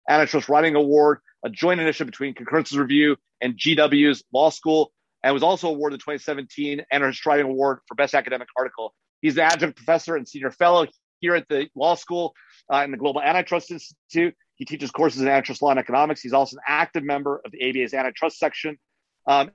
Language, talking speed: English, 195 wpm